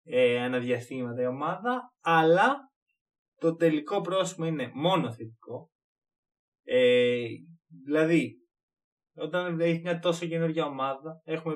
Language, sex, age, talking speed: Greek, male, 20-39, 95 wpm